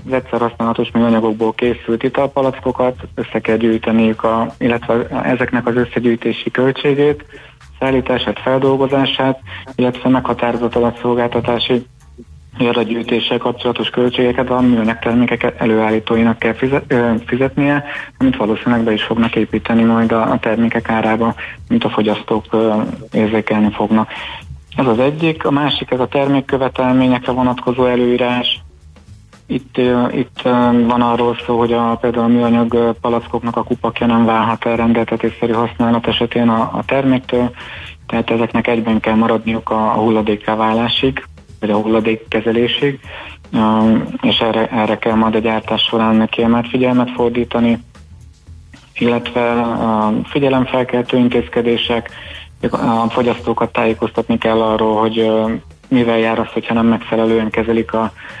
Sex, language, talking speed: male, Hungarian, 120 wpm